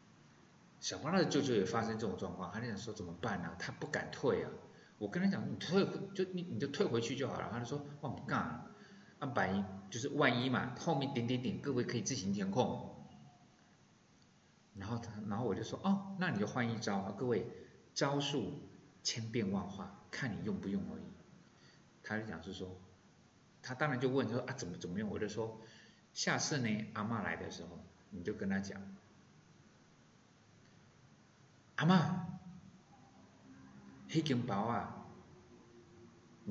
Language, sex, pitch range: Chinese, male, 105-150 Hz